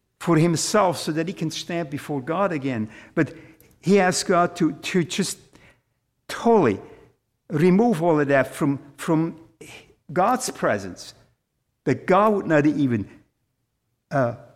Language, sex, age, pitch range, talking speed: English, male, 50-69, 130-165 Hz, 130 wpm